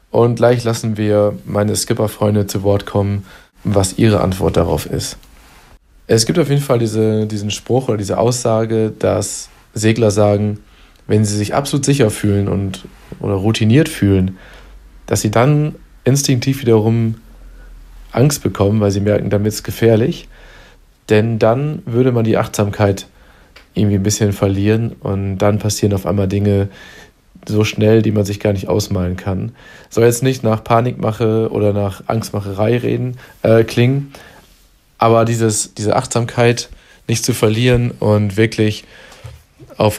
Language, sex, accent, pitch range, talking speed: German, male, German, 100-115 Hz, 145 wpm